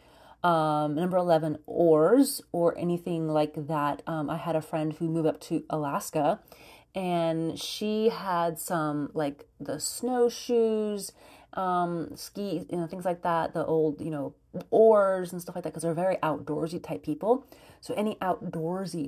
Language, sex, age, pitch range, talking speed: English, female, 30-49, 155-215 Hz, 155 wpm